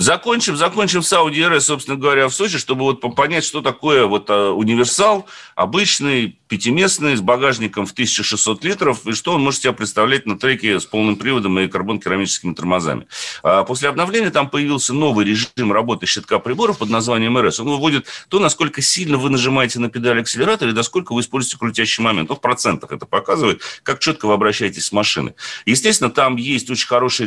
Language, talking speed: Russian, 180 wpm